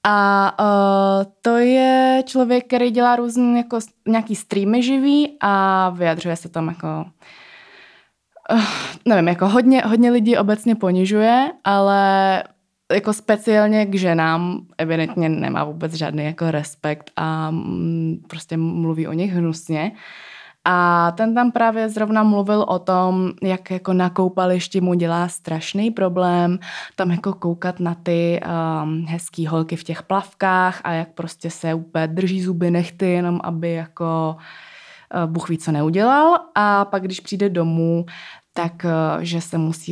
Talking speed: 135 wpm